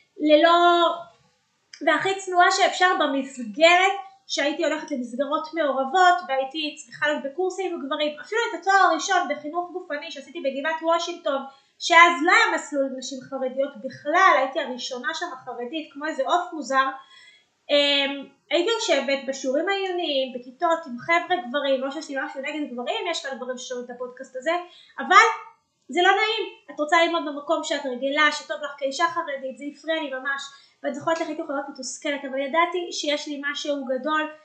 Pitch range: 275-345 Hz